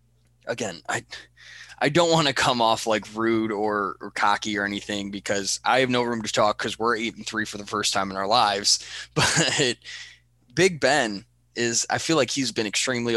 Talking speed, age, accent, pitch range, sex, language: 200 wpm, 20-39, American, 105-130 Hz, male, English